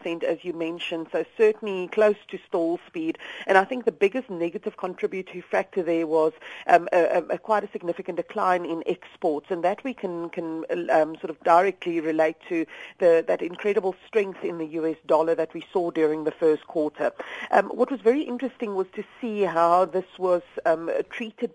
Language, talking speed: English, 190 wpm